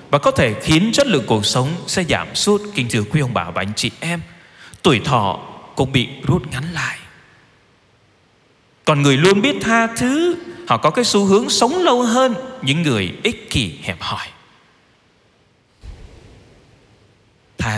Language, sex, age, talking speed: Vietnamese, male, 20-39, 160 wpm